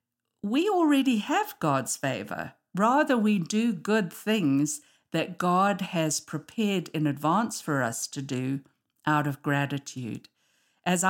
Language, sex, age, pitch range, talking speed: English, female, 50-69, 145-195 Hz, 130 wpm